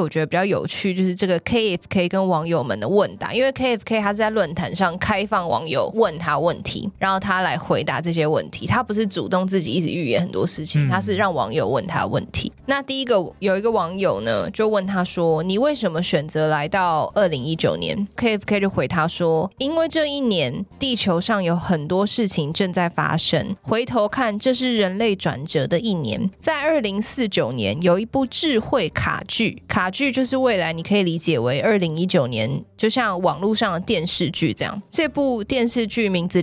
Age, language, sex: 20-39, Chinese, female